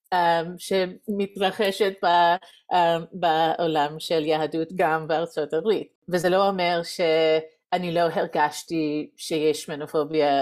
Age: 30-49